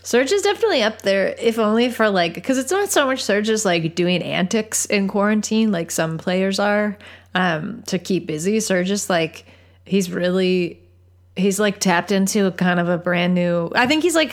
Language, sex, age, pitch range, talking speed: English, female, 30-49, 160-210 Hz, 200 wpm